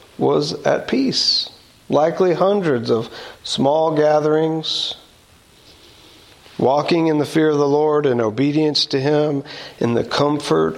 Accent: American